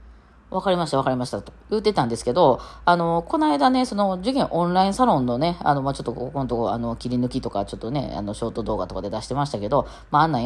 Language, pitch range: Japanese, 145-230 Hz